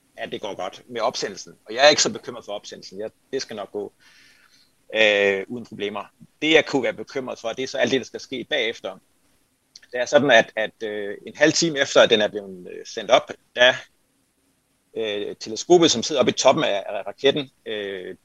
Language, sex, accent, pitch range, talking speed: Danish, male, native, 110-145 Hz, 215 wpm